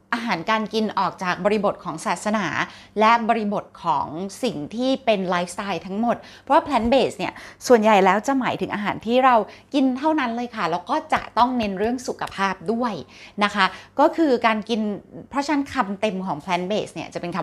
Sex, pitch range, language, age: female, 190-240 Hz, Thai, 20-39